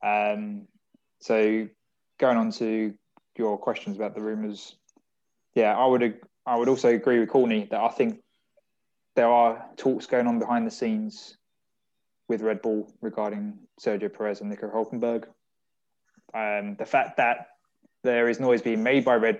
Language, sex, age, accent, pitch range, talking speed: English, male, 20-39, British, 110-140 Hz, 160 wpm